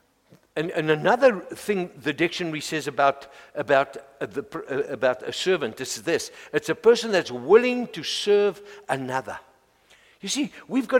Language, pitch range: English, 185-260 Hz